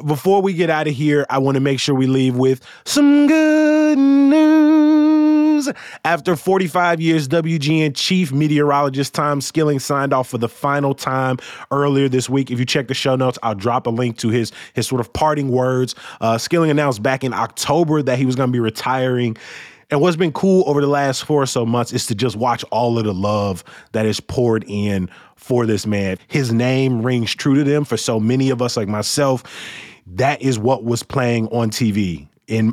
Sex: male